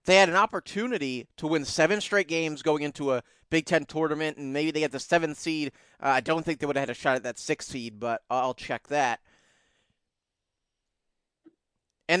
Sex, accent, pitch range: male, American, 135-175 Hz